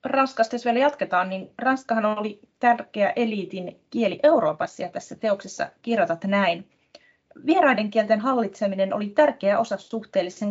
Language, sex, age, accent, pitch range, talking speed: Finnish, female, 30-49, native, 175-245 Hz, 130 wpm